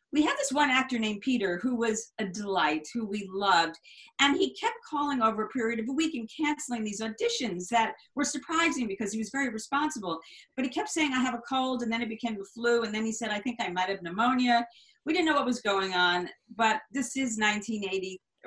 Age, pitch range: 40-59, 185-245 Hz